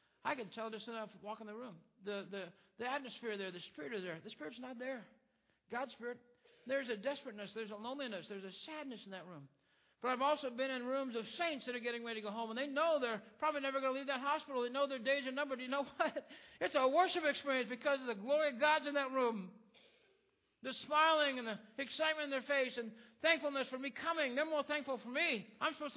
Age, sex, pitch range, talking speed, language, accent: 60-79, male, 230-285 Hz, 245 wpm, English, American